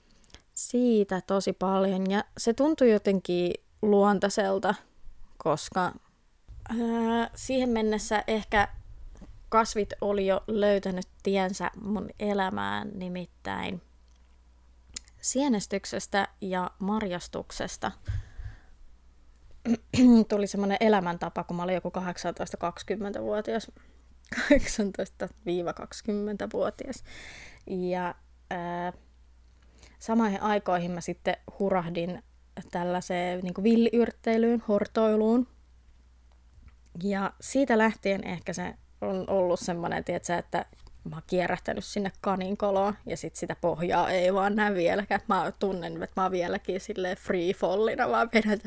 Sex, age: female, 20-39